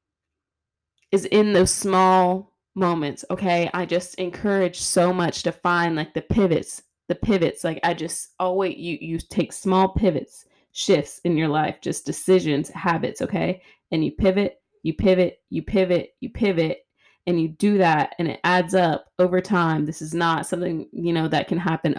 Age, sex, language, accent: 20-39, female, English, American